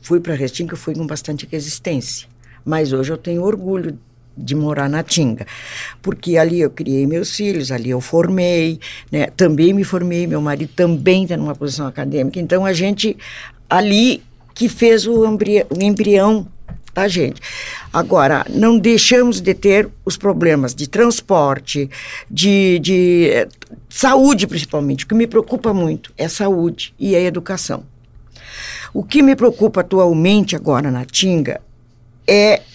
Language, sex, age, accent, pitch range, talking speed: Portuguese, female, 60-79, Brazilian, 145-195 Hz, 150 wpm